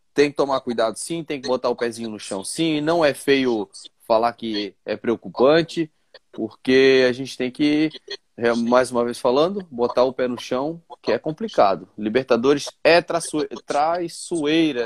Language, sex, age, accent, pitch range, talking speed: Portuguese, male, 20-39, Brazilian, 125-170 Hz, 160 wpm